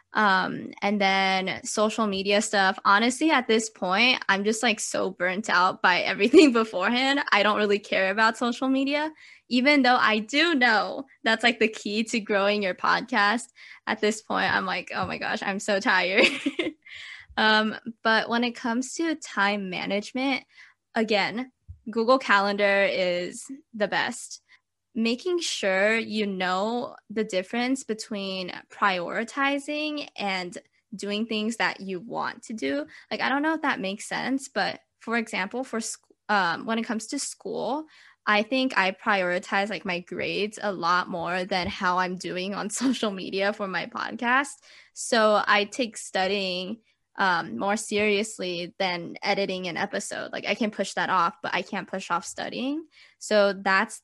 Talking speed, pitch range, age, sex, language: 160 wpm, 195-245 Hz, 10-29, female, English